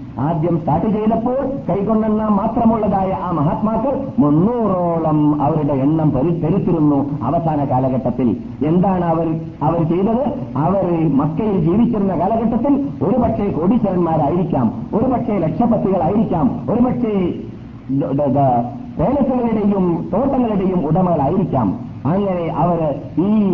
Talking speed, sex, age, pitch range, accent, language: 80 wpm, male, 50-69, 150-220 Hz, native, Malayalam